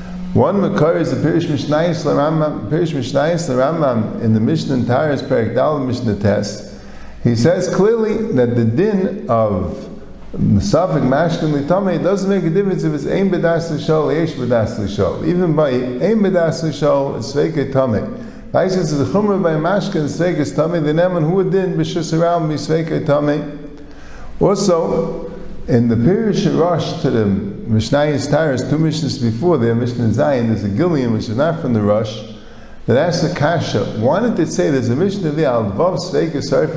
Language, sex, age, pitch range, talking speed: English, male, 50-69, 125-175 Hz, 175 wpm